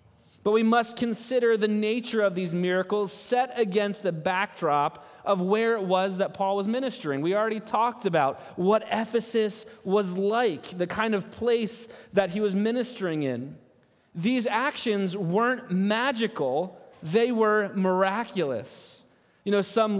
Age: 30-49